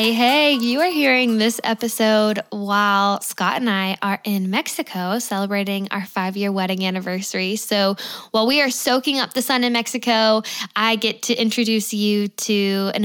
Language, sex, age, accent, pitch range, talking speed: English, female, 10-29, American, 205-235 Hz, 160 wpm